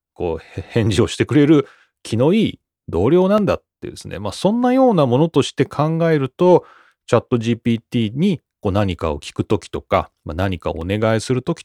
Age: 30-49